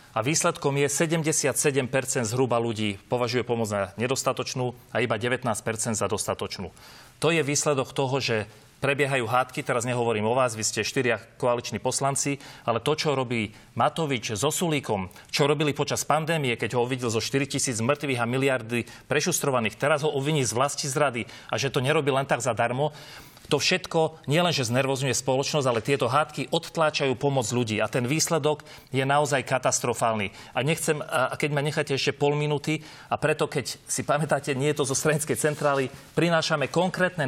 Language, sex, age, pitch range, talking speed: Slovak, male, 40-59, 125-150 Hz, 165 wpm